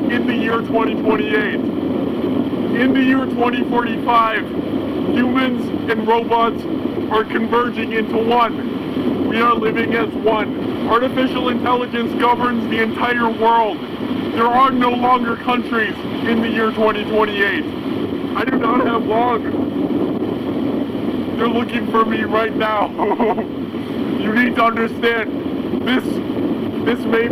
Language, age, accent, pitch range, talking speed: English, 50-69, American, 230-290 Hz, 115 wpm